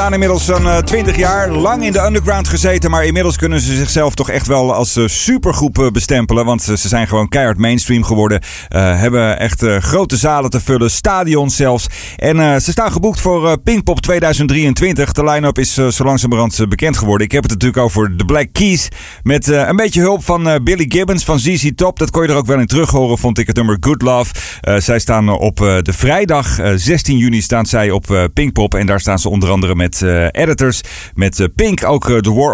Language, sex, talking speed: Dutch, male, 225 wpm